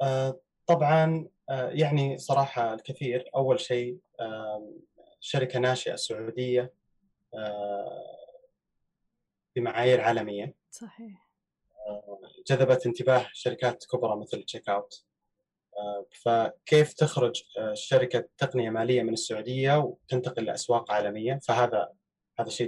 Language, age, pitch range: Arabic, 20-39, 115-150 Hz